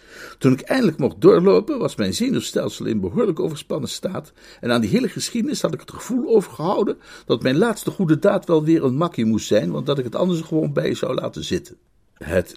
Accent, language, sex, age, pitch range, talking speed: Dutch, Dutch, male, 60-79, 90-135 Hz, 210 wpm